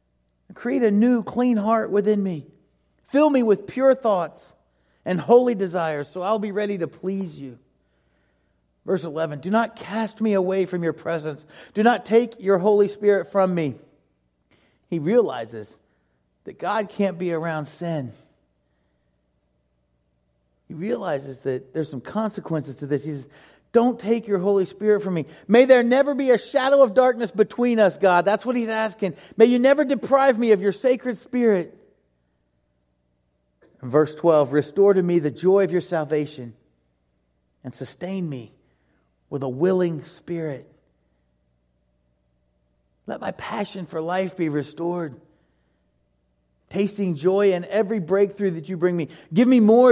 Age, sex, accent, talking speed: 40-59, male, American, 150 wpm